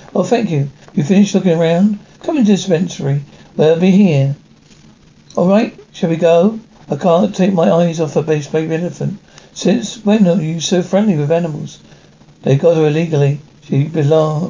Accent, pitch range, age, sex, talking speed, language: British, 160-195 Hz, 60-79, male, 180 wpm, English